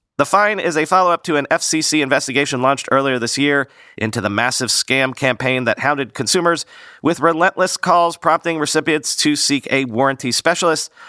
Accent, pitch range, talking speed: American, 120-155 Hz, 170 wpm